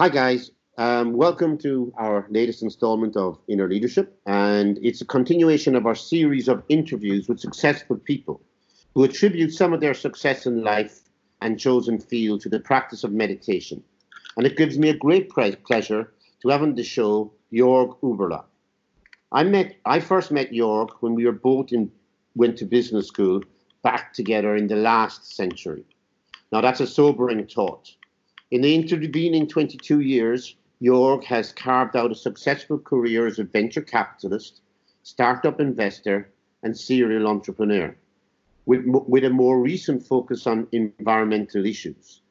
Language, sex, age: English, male, 50-69